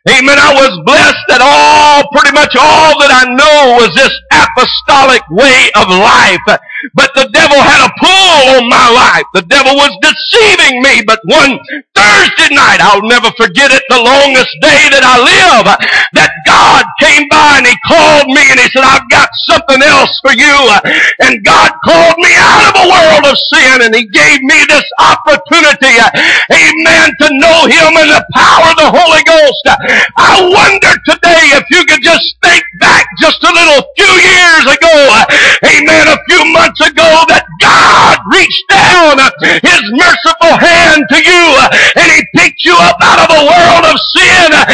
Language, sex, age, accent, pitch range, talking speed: English, male, 50-69, American, 275-335 Hz, 170 wpm